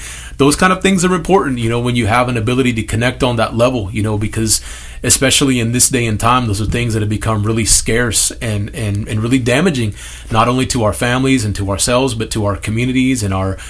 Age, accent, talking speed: 30-49, American, 235 wpm